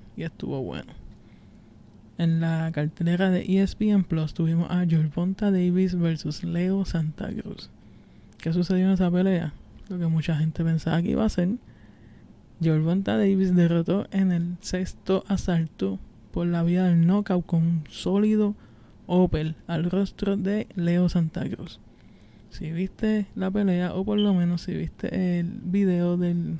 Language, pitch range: Spanish, 160-190 Hz